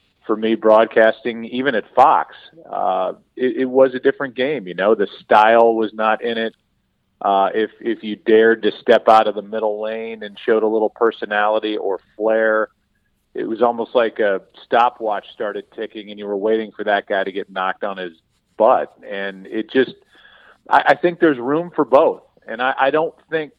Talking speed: 195 wpm